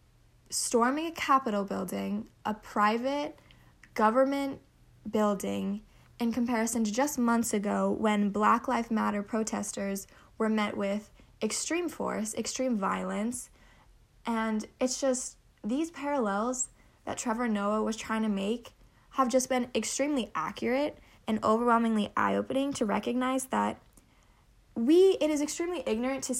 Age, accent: 10-29, American